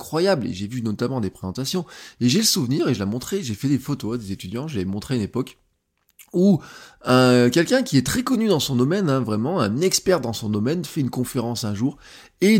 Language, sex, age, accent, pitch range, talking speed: French, male, 20-39, French, 115-170 Hz, 235 wpm